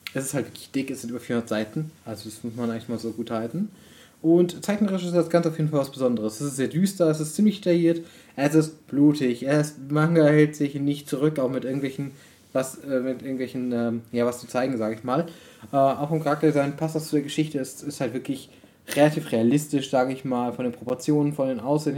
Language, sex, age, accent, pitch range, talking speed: German, male, 20-39, German, 130-155 Hz, 235 wpm